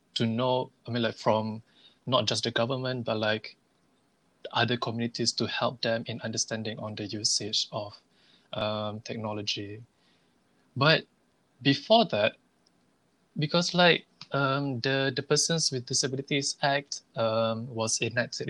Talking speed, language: 130 wpm, English